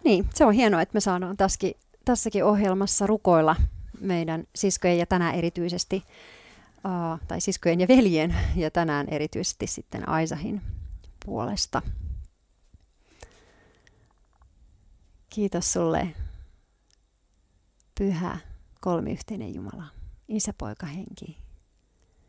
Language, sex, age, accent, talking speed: Finnish, female, 40-59, native, 85 wpm